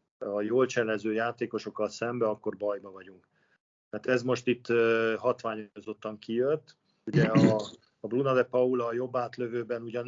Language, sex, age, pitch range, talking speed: Hungarian, male, 50-69, 110-130 Hz, 145 wpm